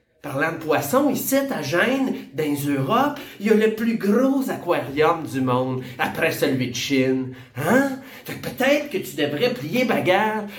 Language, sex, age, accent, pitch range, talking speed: French, male, 30-49, Canadian, 155-245 Hz, 170 wpm